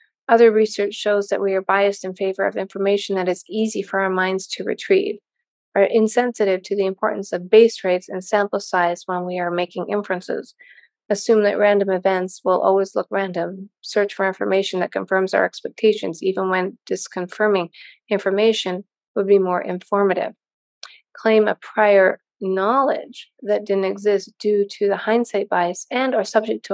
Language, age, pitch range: English, 30-49, 190-220 Hz